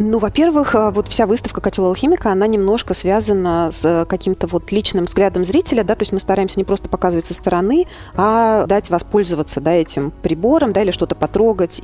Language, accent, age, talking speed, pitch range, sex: Russian, native, 30-49, 180 wpm, 165-210 Hz, female